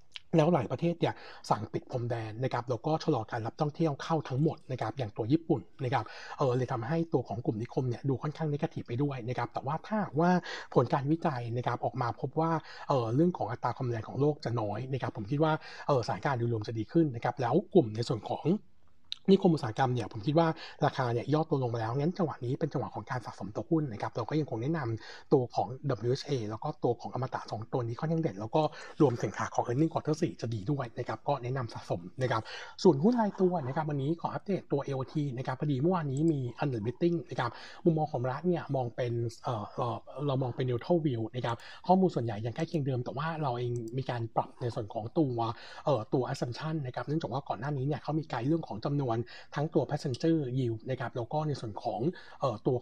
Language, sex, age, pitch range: Thai, male, 60-79, 120-160 Hz